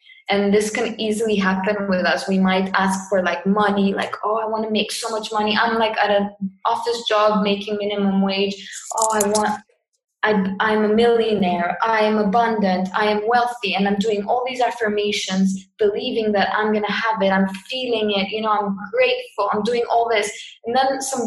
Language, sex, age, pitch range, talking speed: English, female, 20-39, 195-220 Hz, 200 wpm